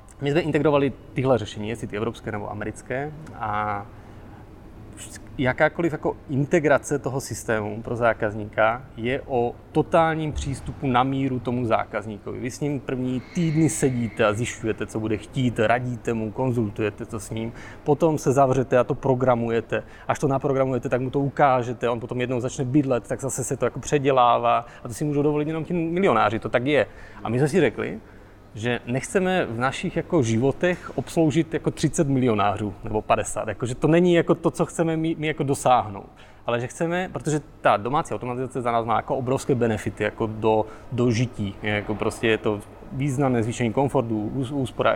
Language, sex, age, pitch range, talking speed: Czech, male, 30-49, 110-145 Hz, 180 wpm